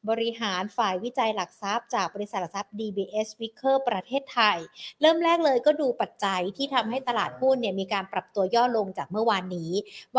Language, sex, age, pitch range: Thai, female, 60-79, 205-265 Hz